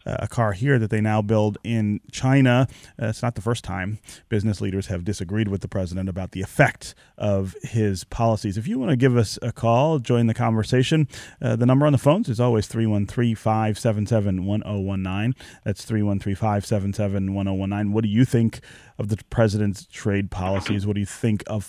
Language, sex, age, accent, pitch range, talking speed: English, male, 30-49, American, 100-125 Hz, 175 wpm